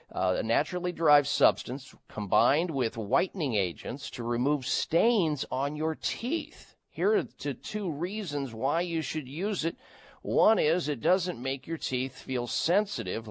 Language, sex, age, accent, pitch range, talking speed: English, male, 50-69, American, 125-160 Hz, 150 wpm